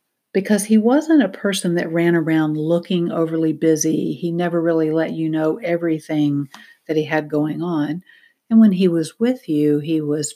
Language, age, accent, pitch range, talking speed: English, 60-79, American, 155-185 Hz, 180 wpm